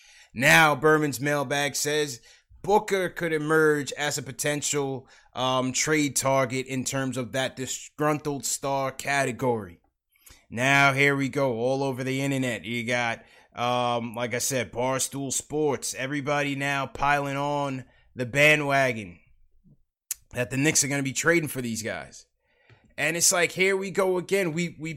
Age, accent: 20-39, American